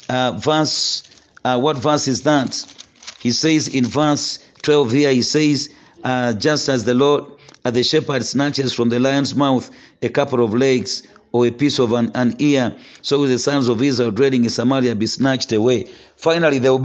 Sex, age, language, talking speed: male, 50-69, English, 190 wpm